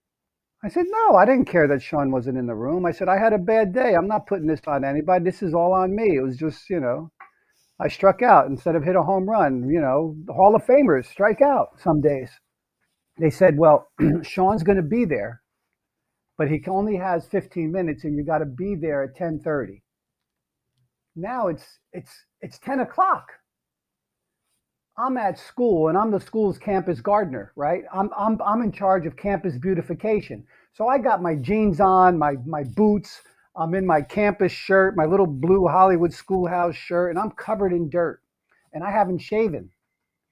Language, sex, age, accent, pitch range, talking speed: English, male, 50-69, American, 155-200 Hz, 195 wpm